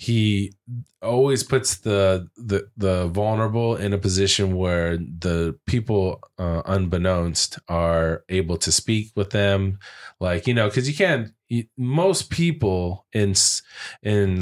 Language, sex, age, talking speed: English, male, 20-39, 130 wpm